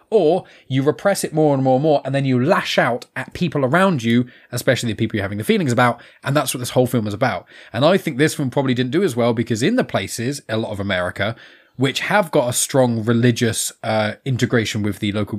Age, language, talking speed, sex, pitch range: 20-39, English, 245 wpm, male, 120-155 Hz